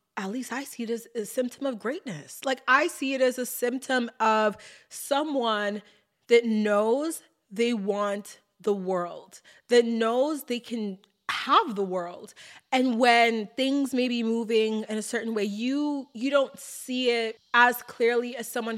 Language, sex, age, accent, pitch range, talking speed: English, female, 20-39, American, 205-245 Hz, 165 wpm